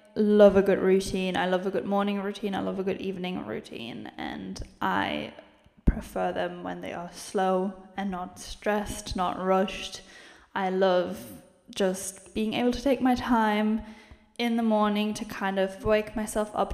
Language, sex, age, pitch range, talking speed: English, female, 10-29, 190-220 Hz, 170 wpm